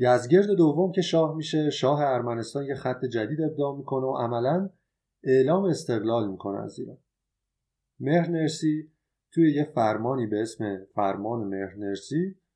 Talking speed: 130 wpm